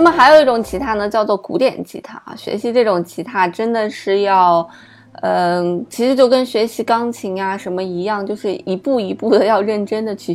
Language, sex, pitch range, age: Chinese, female, 185-245 Hz, 20-39